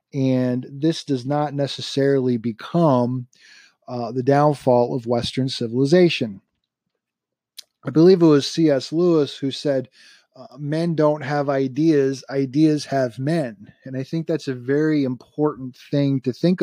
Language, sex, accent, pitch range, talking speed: English, male, American, 125-155 Hz, 135 wpm